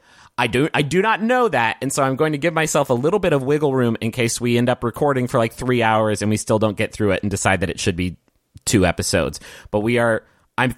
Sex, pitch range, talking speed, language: male, 105-145 Hz, 275 wpm, English